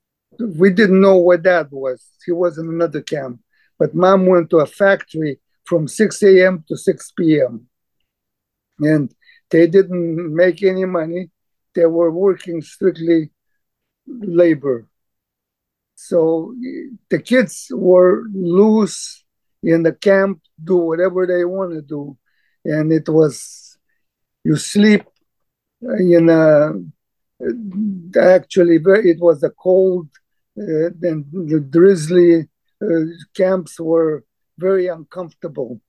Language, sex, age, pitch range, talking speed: English, male, 50-69, 155-185 Hz, 115 wpm